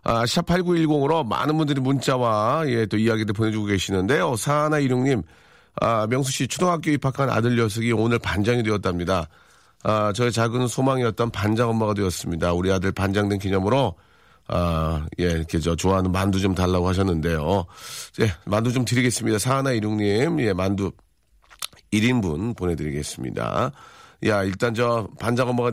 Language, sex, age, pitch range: Korean, male, 40-59, 90-130 Hz